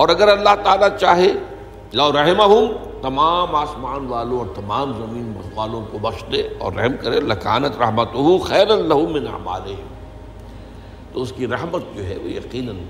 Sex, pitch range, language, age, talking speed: male, 100-130 Hz, Urdu, 60-79, 165 wpm